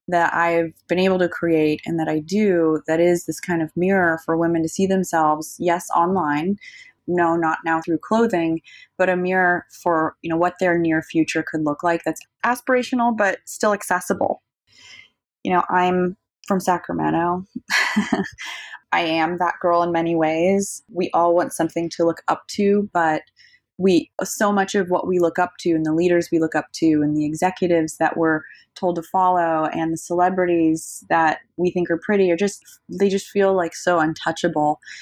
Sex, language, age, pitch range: female, English, 20-39, 160-185 Hz